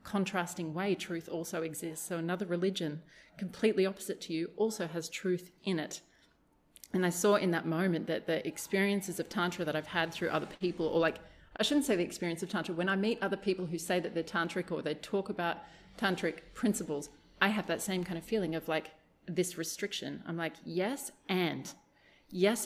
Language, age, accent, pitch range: English, 30-49, Australian, 160-195 Hz